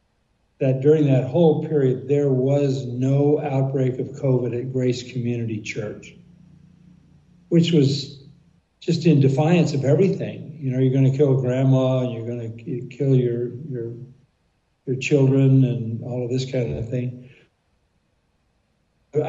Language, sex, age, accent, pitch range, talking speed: English, male, 50-69, American, 125-150 Hz, 135 wpm